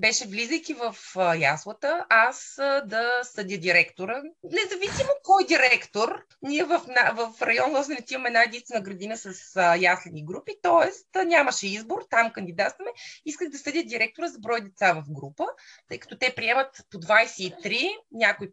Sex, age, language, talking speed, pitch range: female, 20-39, Bulgarian, 155 wpm, 195-275 Hz